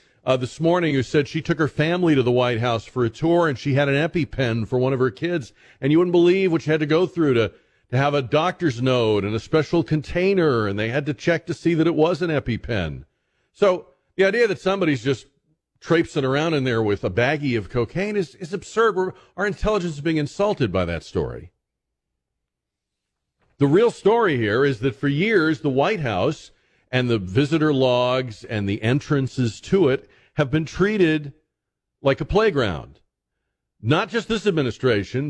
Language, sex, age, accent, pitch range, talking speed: English, male, 40-59, American, 115-165 Hz, 195 wpm